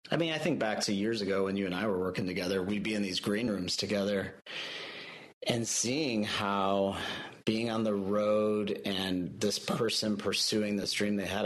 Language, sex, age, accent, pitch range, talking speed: English, male, 30-49, American, 95-105 Hz, 195 wpm